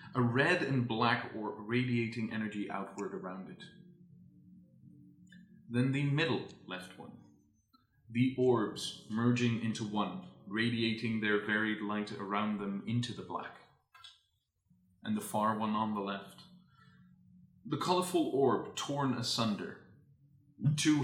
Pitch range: 110-135 Hz